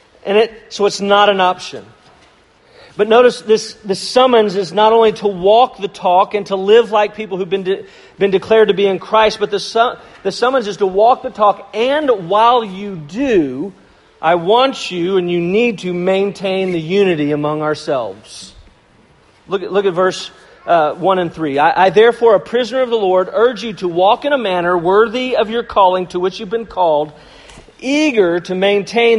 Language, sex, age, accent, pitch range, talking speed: English, male, 40-59, American, 190-230 Hz, 195 wpm